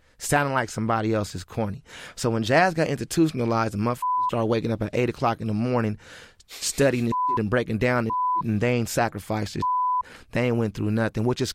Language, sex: English, male